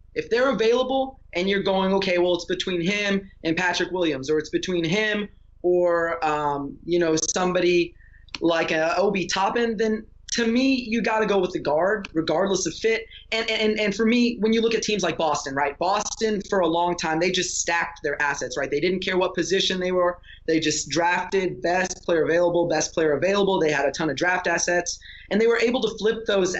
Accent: American